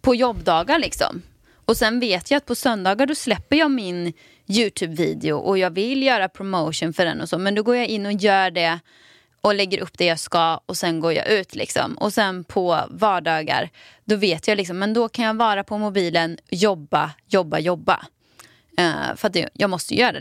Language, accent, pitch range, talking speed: Swedish, native, 170-220 Hz, 200 wpm